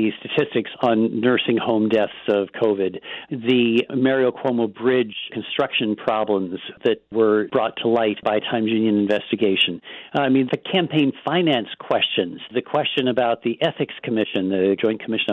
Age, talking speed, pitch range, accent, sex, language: 50-69, 145 wpm, 110-130 Hz, American, male, English